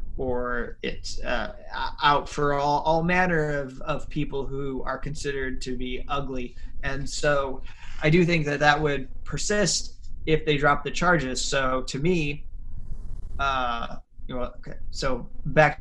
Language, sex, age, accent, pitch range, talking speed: English, male, 30-49, American, 130-155 Hz, 140 wpm